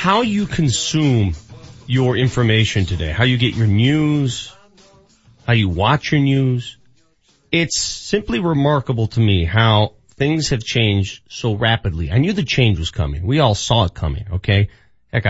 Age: 30-49